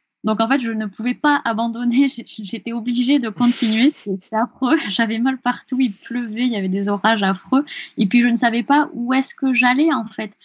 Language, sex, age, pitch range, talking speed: French, female, 20-39, 205-260 Hz, 210 wpm